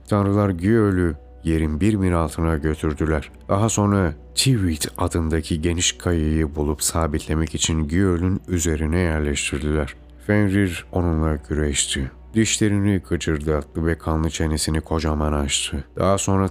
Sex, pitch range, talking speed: male, 75-90 Hz, 115 wpm